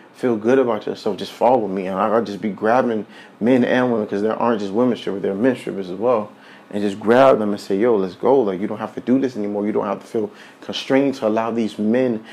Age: 30-49